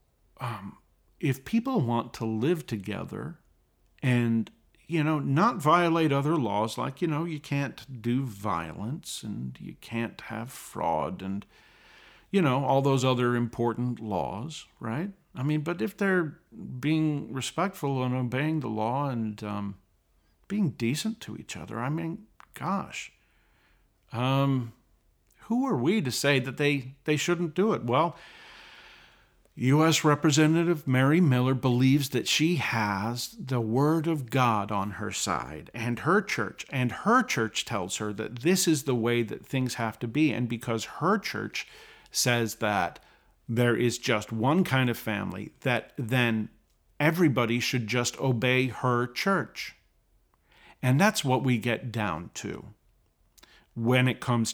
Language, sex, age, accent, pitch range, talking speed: English, male, 50-69, American, 115-155 Hz, 145 wpm